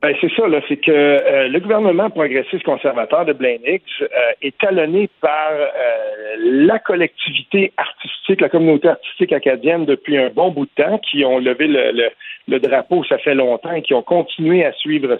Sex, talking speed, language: male, 190 wpm, French